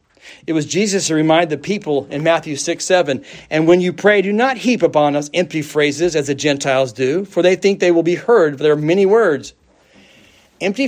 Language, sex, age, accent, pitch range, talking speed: English, male, 40-59, American, 140-170 Hz, 210 wpm